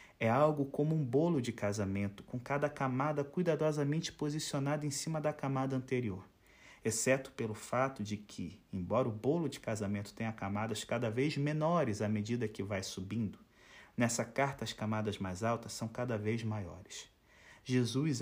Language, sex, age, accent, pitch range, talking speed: Portuguese, male, 30-49, Brazilian, 110-150 Hz, 160 wpm